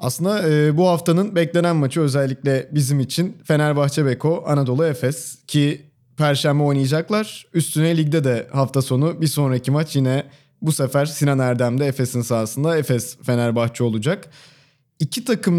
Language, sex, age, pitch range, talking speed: Turkish, male, 30-49, 125-155 Hz, 125 wpm